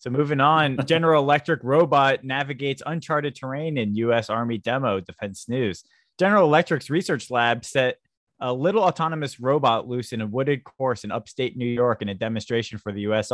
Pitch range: 105-140 Hz